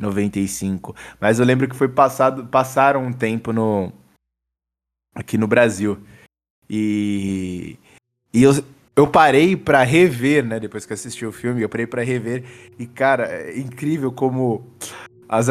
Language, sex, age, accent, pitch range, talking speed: Portuguese, male, 20-39, Brazilian, 100-130 Hz, 145 wpm